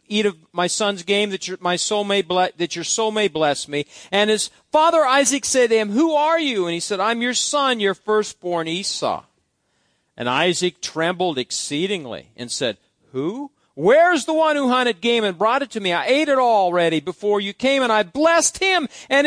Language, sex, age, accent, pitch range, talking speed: English, male, 50-69, American, 165-270 Hz, 205 wpm